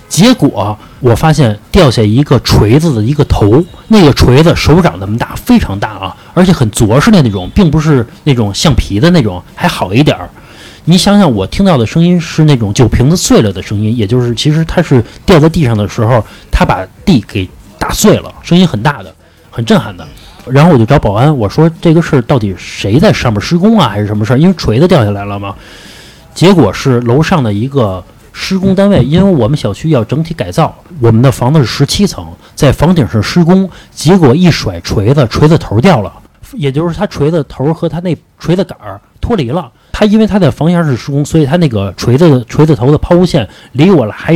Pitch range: 110-170 Hz